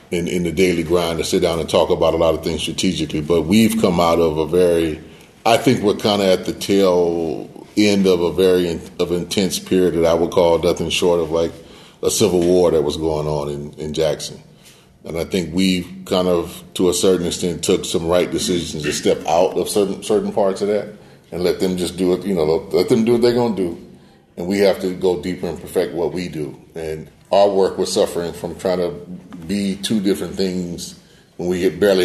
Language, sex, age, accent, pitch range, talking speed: English, male, 30-49, American, 80-95 Hz, 230 wpm